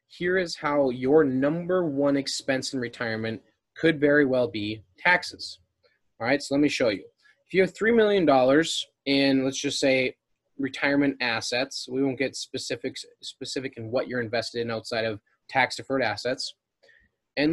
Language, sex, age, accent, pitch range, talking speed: English, male, 20-39, American, 125-160 Hz, 160 wpm